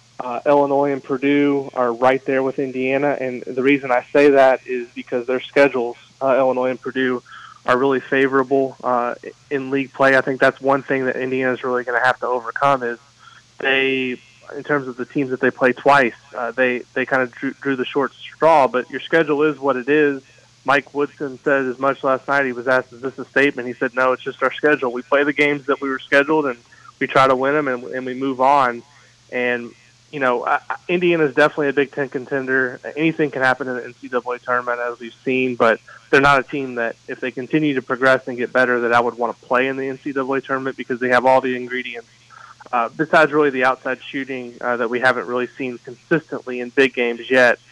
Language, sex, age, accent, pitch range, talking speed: English, male, 20-39, American, 125-140 Hz, 225 wpm